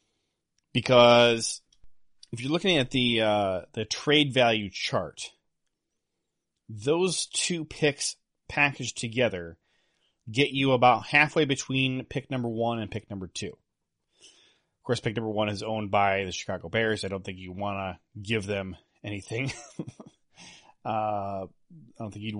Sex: male